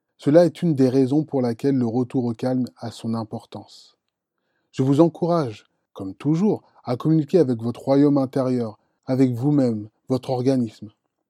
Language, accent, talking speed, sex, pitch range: French, French, 155 wpm, male, 120-155 Hz